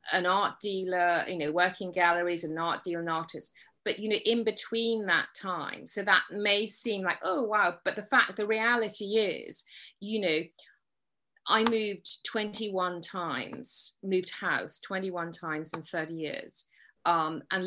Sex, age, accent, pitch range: female, 30-49, British, 170-215 Hz